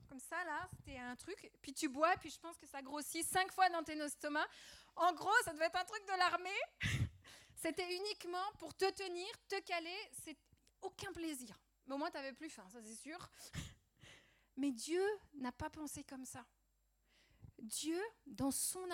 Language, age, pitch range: French, 30-49, 235-320 Hz